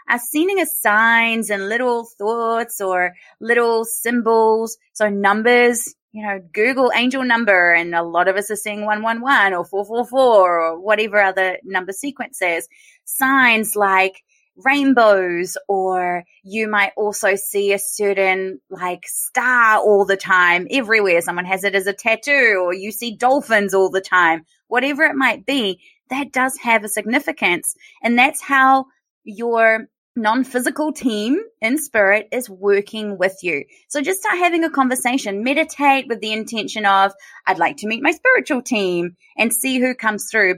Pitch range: 190-255 Hz